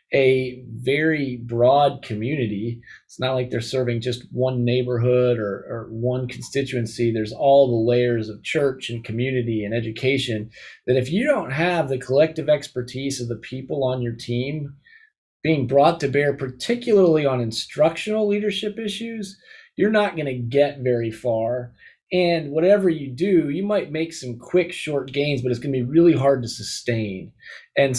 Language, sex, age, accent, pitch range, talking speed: English, male, 30-49, American, 120-145 Hz, 165 wpm